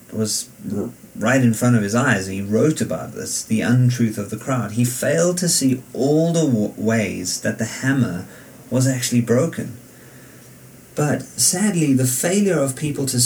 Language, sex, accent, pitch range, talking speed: English, male, British, 105-130 Hz, 165 wpm